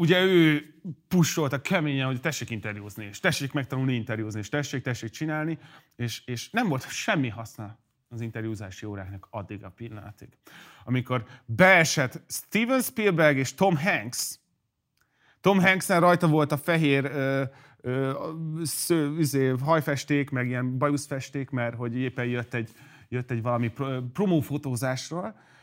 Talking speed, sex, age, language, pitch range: 135 wpm, male, 30-49, Hungarian, 120-155 Hz